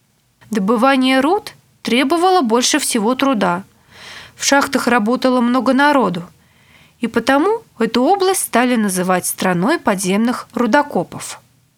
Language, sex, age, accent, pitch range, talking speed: Russian, female, 20-39, native, 205-295 Hz, 100 wpm